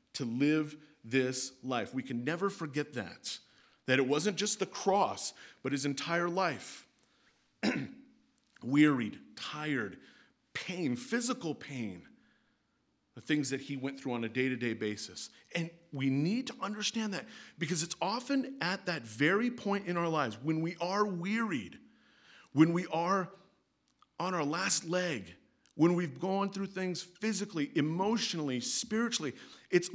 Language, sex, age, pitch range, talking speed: English, male, 40-59, 160-220 Hz, 140 wpm